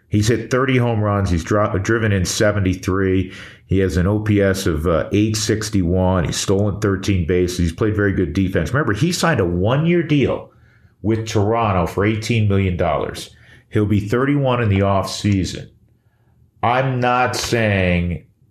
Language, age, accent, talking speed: English, 40-59, American, 145 wpm